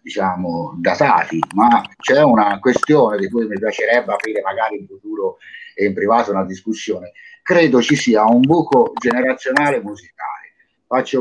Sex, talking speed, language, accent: male, 145 wpm, Italian, native